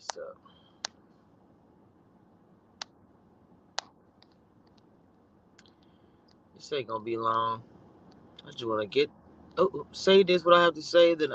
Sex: male